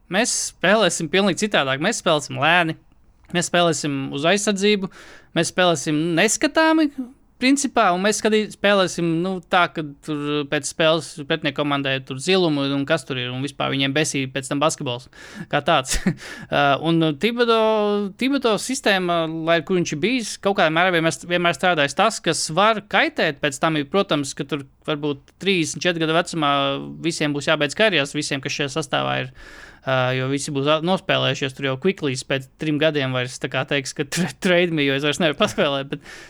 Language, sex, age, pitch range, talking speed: English, male, 20-39, 140-180 Hz, 175 wpm